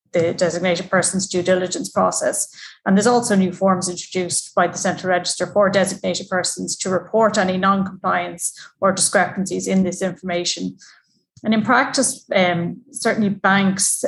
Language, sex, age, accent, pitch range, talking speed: English, female, 30-49, Irish, 180-205 Hz, 145 wpm